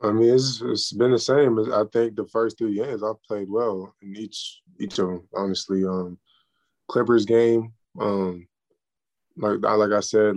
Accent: American